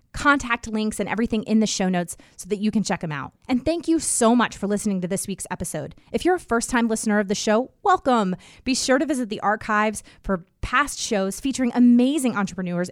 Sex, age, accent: female, 30-49, American